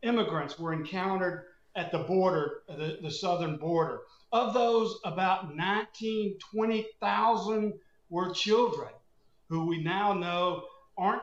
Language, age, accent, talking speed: English, 50-69, American, 120 wpm